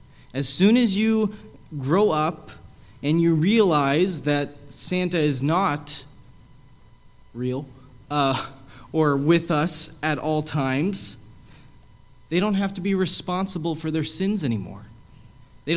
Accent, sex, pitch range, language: American, male, 120-170 Hz, English